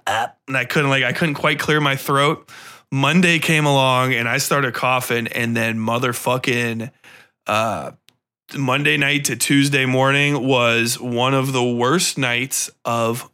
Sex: male